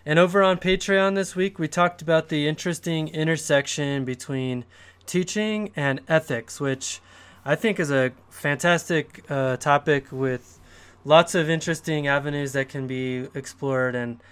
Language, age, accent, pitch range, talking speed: English, 20-39, American, 130-165 Hz, 145 wpm